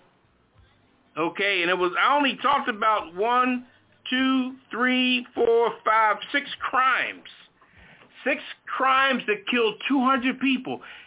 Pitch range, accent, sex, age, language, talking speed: 185-260 Hz, American, male, 50-69, English, 115 wpm